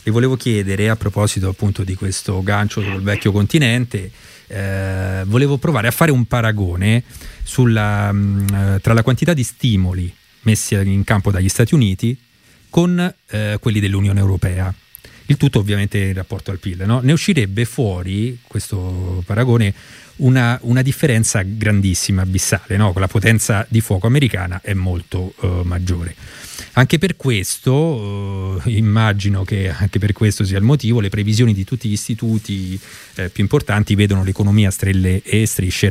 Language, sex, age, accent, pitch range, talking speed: Italian, male, 30-49, native, 95-120 Hz, 150 wpm